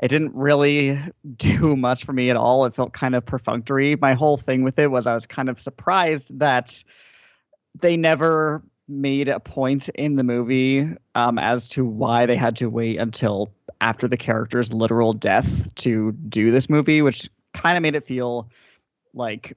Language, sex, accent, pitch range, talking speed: English, male, American, 120-145 Hz, 180 wpm